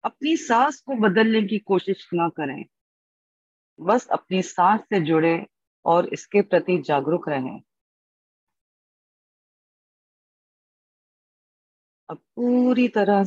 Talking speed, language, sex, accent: 95 wpm, English, female, Indian